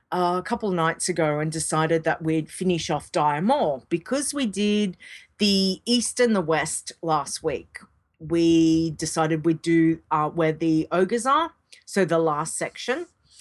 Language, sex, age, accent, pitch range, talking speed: English, female, 40-59, Australian, 160-210 Hz, 165 wpm